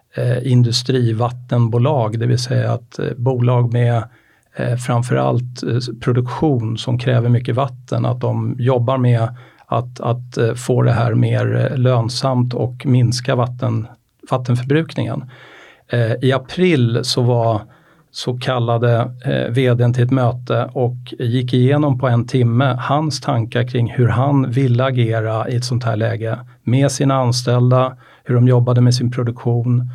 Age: 50-69